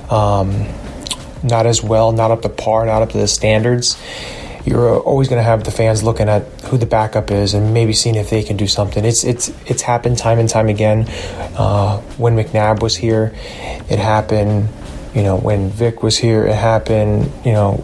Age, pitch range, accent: 20-39, 105-115 Hz, American